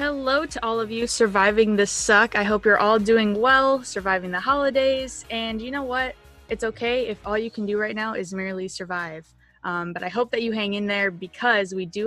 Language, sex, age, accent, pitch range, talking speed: English, female, 20-39, American, 190-230 Hz, 225 wpm